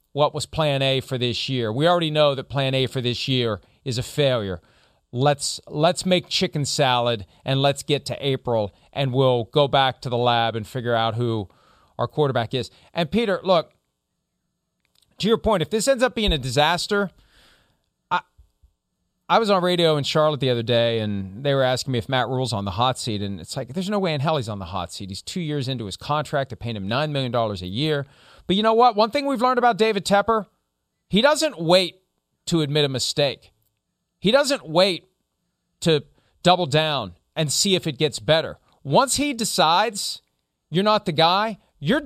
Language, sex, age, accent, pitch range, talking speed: English, male, 40-59, American, 120-180 Hz, 205 wpm